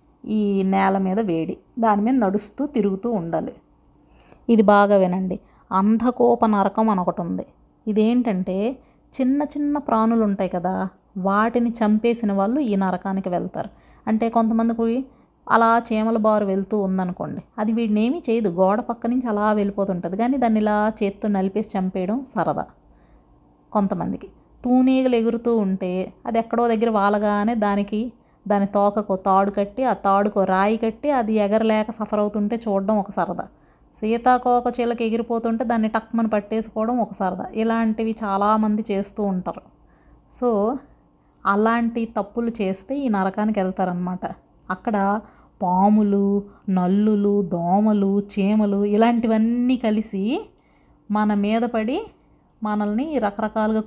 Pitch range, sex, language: 195-230 Hz, female, Telugu